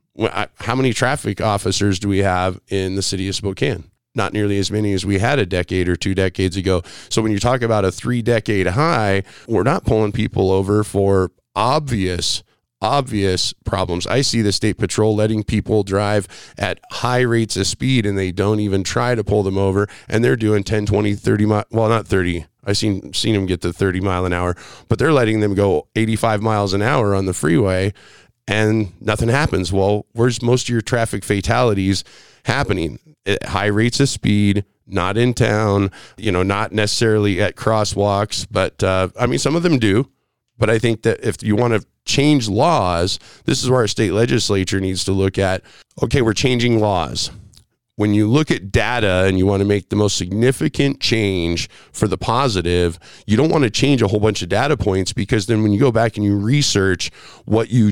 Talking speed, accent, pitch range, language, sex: 200 wpm, American, 95-115 Hz, English, male